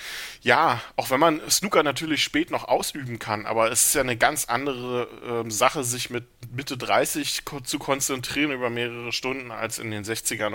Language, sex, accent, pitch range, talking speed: German, male, German, 110-125 Hz, 180 wpm